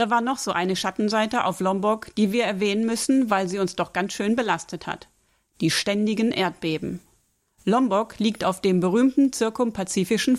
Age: 40-59